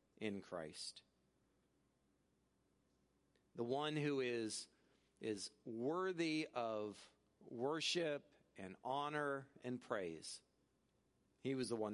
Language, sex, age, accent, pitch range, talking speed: English, male, 40-59, American, 120-165 Hz, 90 wpm